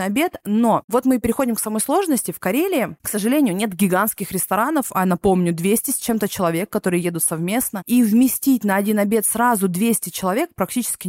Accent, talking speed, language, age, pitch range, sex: native, 180 wpm, Russian, 20-39, 180-245 Hz, female